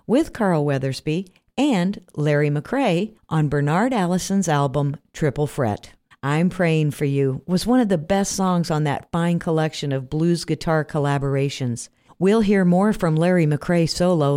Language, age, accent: German, 50-69, American